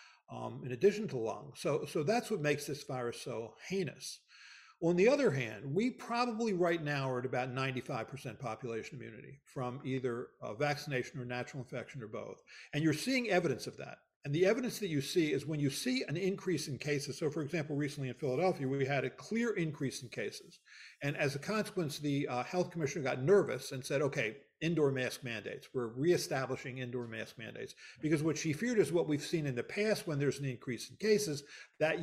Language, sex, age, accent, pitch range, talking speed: English, male, 50-69, American, 130-170 Hz, 205 wpm